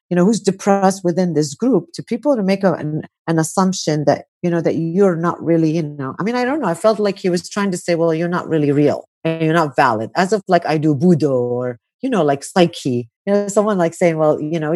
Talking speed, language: 260 wpm, English